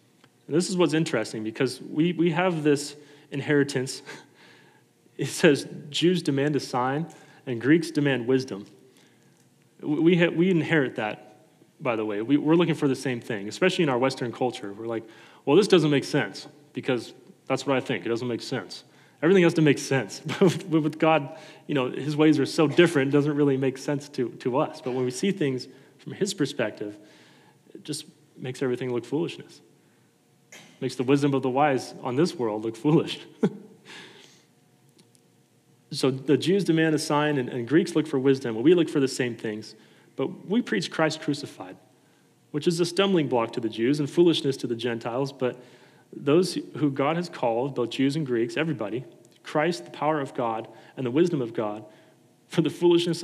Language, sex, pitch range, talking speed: English, male, 125-155 Hz, 185 wpm